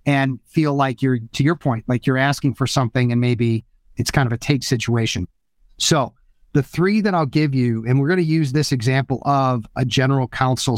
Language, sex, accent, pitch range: English, male, American, 130-155 Hz